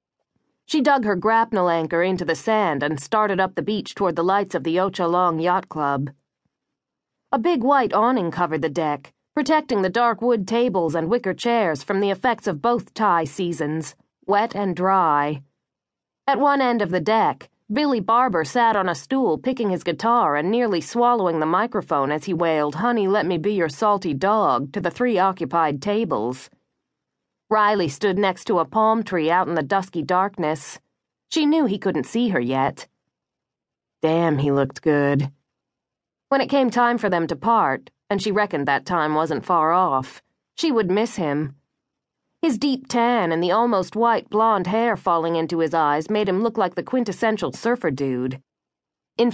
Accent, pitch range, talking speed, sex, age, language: American, 165-230 Hz, 180 wpm, female, 40-59, English